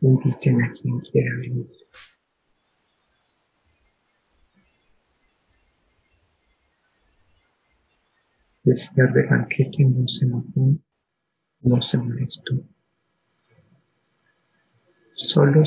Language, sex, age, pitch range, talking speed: Spanish, male, 60-79, 125-150 Hz, 60 wpm